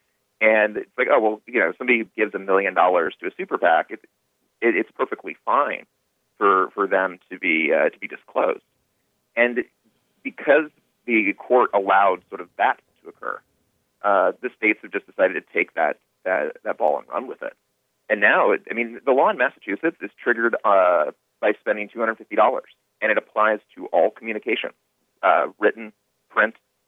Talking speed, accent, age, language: 180 wpm, American, 30-49, English